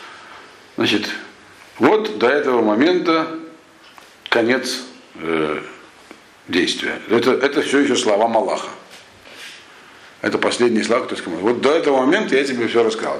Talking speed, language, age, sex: 125 wpm, Russian, 50-69, male